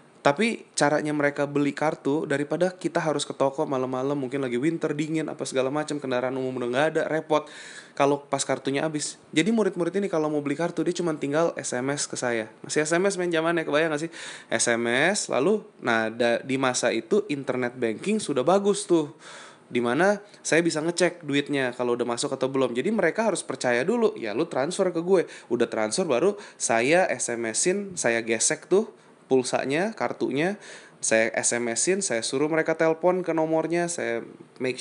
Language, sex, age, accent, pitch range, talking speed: Indonesian, male, 20-39, native, 125-160 Hz, 170 wpm